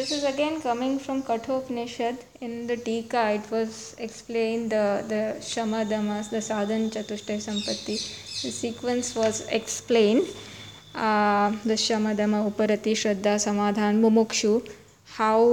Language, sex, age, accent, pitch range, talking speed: English, female, 20-39, Indian, 220-240 Hz, 130 wpm